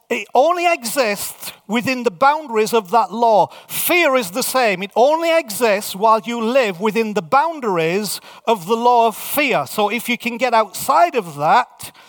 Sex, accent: male, British